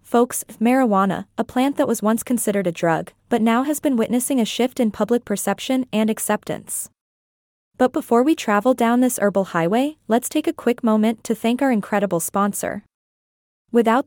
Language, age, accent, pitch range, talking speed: English, 20-39, American, 205-255 Hz, 175 wpm